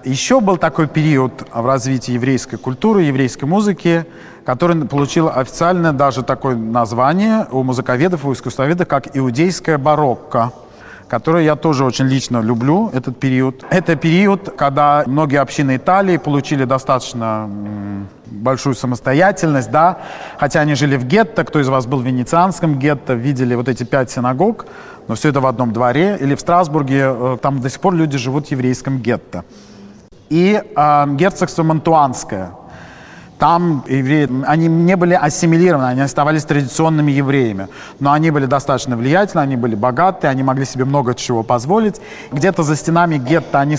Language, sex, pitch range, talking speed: Russian, male, 130-165 Hz, 150 wpm